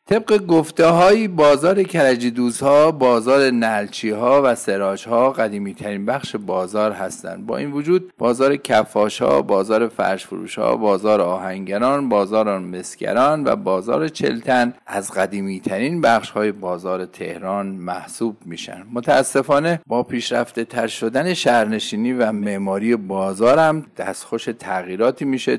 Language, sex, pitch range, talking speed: Persian, male, 100-130 Hz, 130 wpm